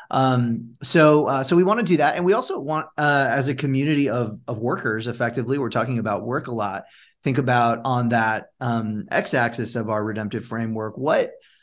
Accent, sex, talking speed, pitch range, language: American, male, 195 wpm, 115-140 Hz, English